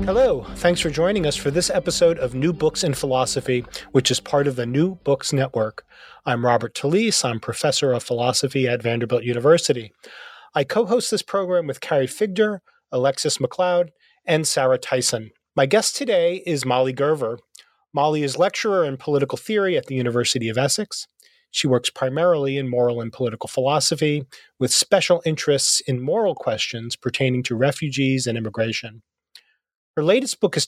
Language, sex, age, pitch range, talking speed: English, male, 30-49, 125-170 Hz, 165 wpm